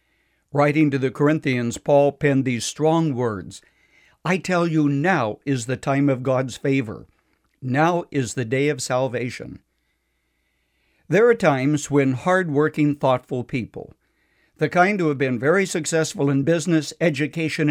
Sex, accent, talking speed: male, American, 140 wpm